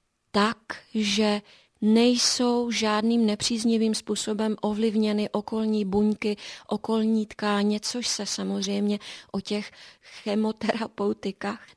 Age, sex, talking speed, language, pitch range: 30-49, female, 80 wpm, Czech, 205-235 Hz